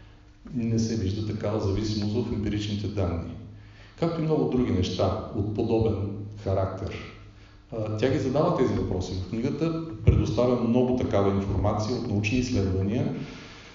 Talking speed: 130 wpm